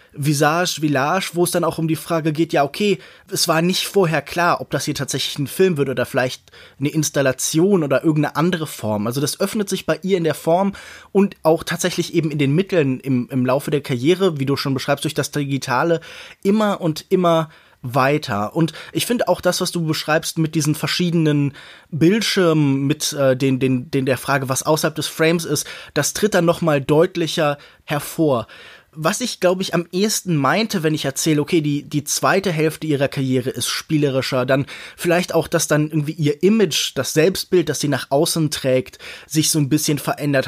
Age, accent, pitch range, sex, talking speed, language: 20-39, German, 140-175 Hz, male, 200 wpm, German